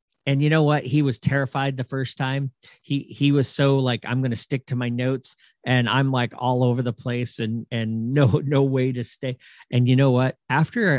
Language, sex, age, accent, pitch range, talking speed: English, male, 40-59, American, 115-140 Hz, 225 wpm